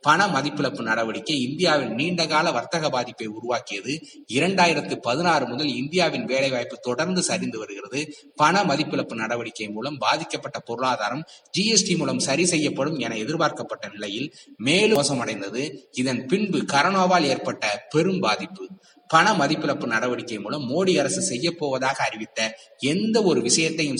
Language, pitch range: Tamil, 130-180 Hz